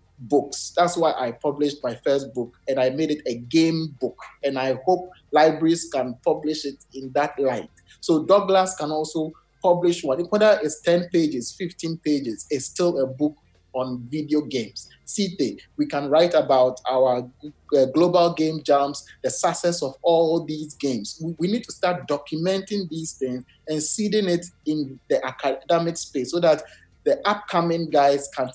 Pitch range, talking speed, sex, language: 135-175 Hz, 165 wpm, male, English